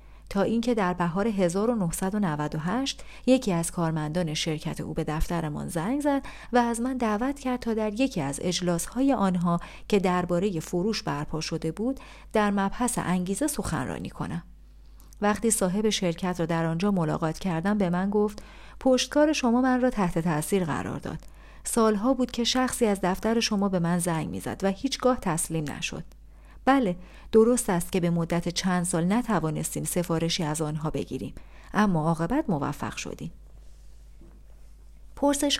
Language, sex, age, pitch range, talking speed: Persian, female, 40-59, 170-235 Hz, 150 wpm